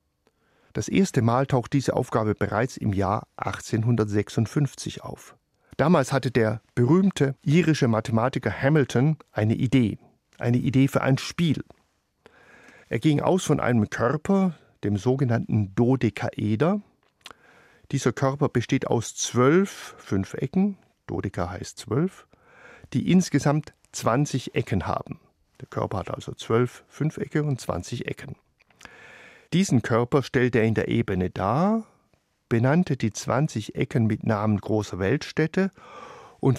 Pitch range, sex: 110-150 Hz, male